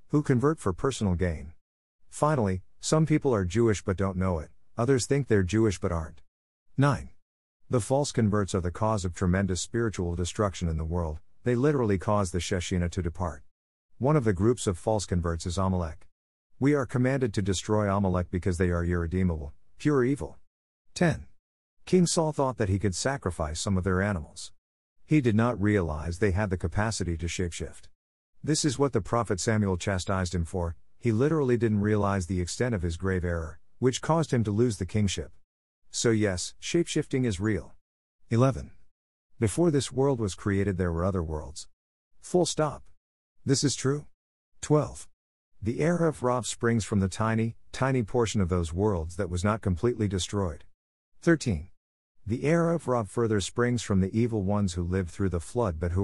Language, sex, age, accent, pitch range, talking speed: English, male, 50-69, American, 85-115 Hz, 180 wpm